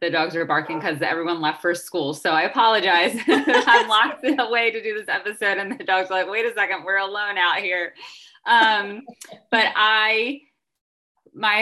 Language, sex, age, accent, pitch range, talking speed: English, female, 20-39, American, 175-215 Hz, 175 wpm